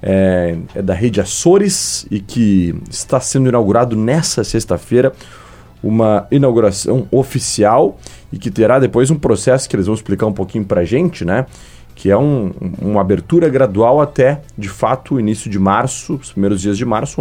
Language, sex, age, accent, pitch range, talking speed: Portuguese, male, 30-49, Brazilian, 105-140 Hz, 175 wpm